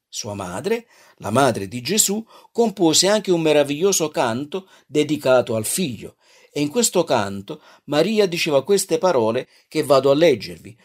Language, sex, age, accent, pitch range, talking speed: Italian, male, 50-69, native, 120-160 Hz, 145 wpm